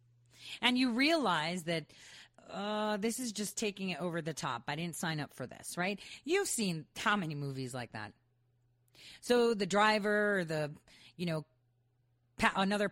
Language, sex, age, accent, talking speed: English, female, 40-59, American, 150 wpm